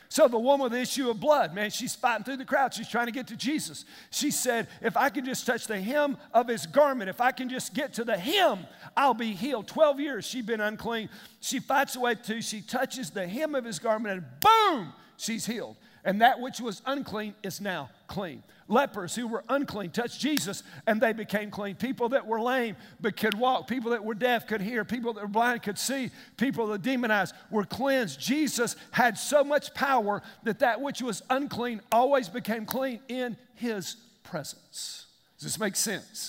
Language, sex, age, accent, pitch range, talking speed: English, male, 50-69, American, 210-260 Hz, 205 wpm